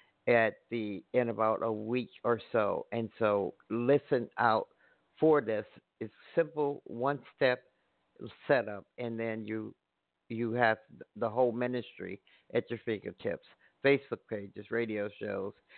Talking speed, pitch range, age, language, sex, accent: 135 wpm, 110-125 Hz, 50-69, English, male, American